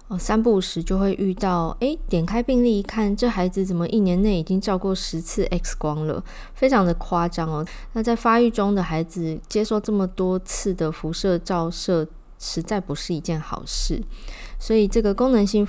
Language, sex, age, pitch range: Chinese, female, 20-39, 165-210 Hz